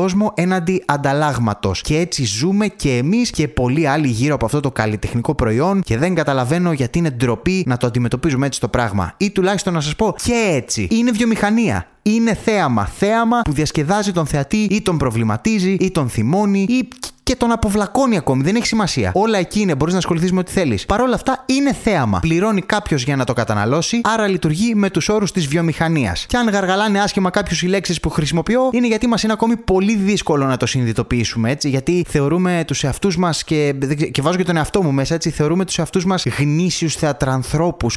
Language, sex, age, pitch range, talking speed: Greek, male, 20-39, 140-200 Hz, 200 wpm